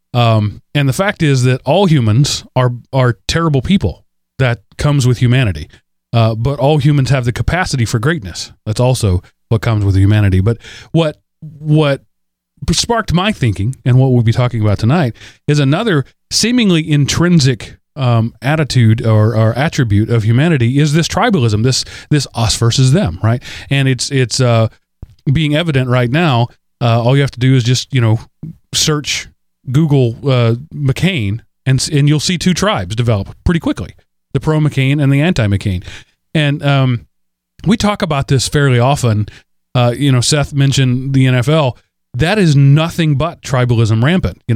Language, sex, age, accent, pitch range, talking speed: English, male, 30-49, American, 115-145 Hz, 165 wpm